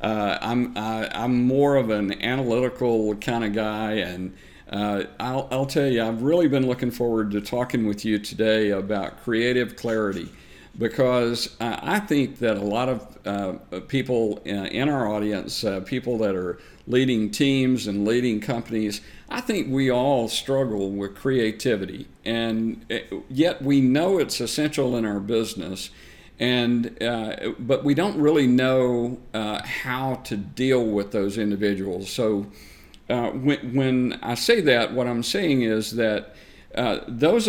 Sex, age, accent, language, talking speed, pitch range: male, 50-69, American, English, 155 wpm, 105-130 Hz